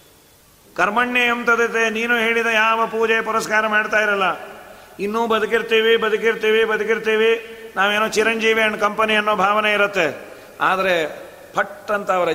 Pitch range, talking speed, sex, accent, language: 185-215 Hz, 100 wpm, male, native, Kannada